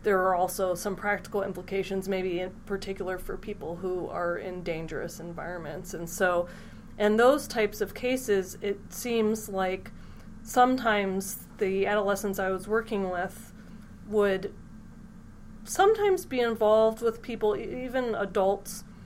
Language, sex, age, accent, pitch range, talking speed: English, female, 30-49, American, 190-220 Hz, 130 wpm